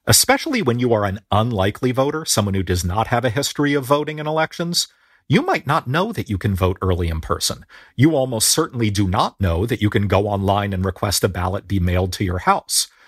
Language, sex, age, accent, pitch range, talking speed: English, male, 40-59, American, 95-135 Hz, 225 wpm